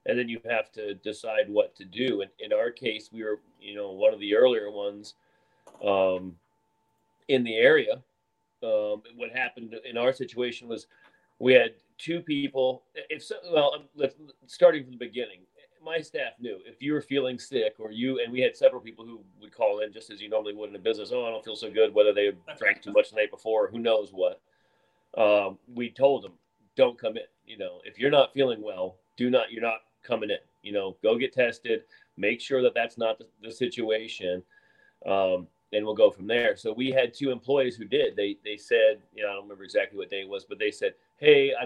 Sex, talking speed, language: male, 220 wpm, English